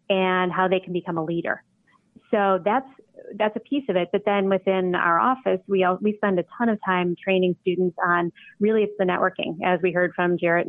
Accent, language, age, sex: American, English, 30-49, female